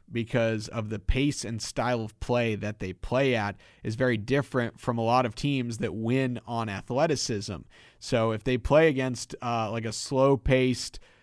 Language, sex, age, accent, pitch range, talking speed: English, male, 30-49, American, 110-130 Hz, 175 wpm